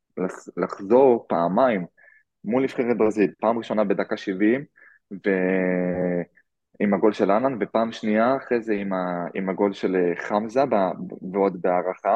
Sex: male